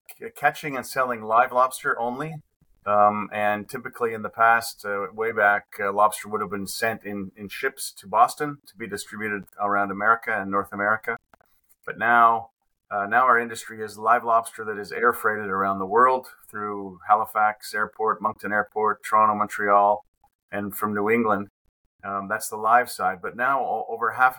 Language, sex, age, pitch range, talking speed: English, male, 40-59, 100-110 Hz, 170 wpm